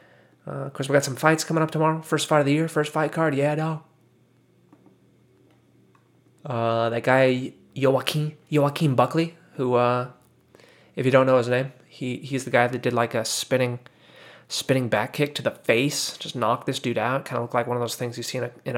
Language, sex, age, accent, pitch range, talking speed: English, male, 20-39, American, 120-160 Hz, 215 wpm